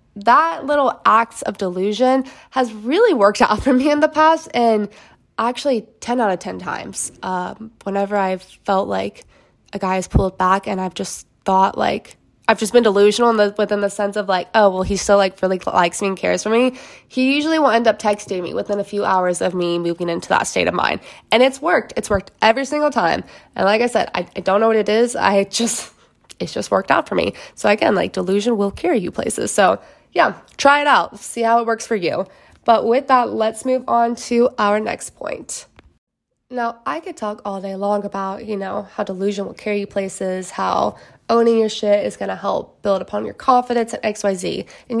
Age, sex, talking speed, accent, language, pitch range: 20-39, female, 225 wpm, American, English, 195-240 Hz